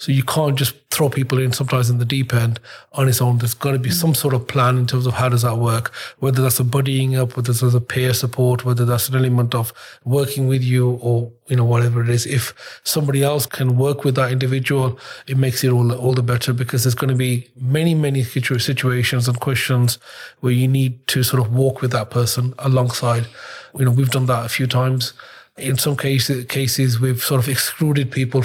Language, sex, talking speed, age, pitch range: English, male, 225 wpm, 30-49, 125-135 Hz